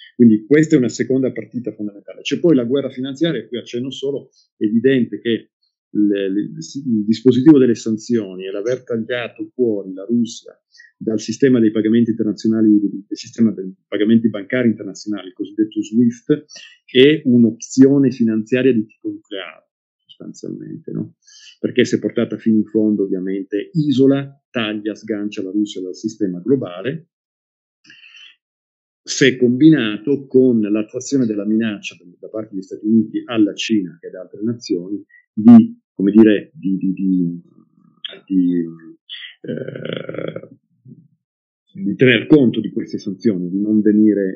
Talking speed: 130 wpm